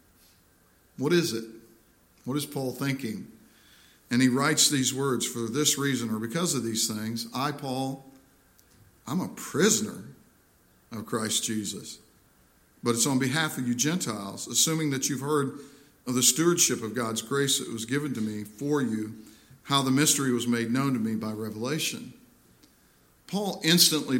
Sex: male